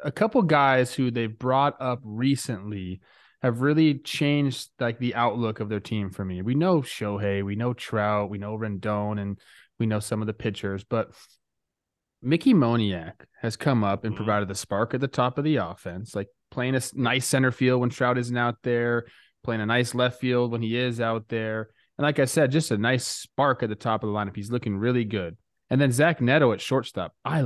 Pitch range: 110-140 Hz